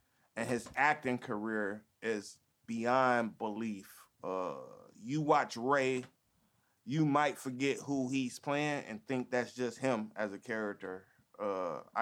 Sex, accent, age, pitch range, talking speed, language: male, American, 20-39, 110-135 Hz, 130 wpm, English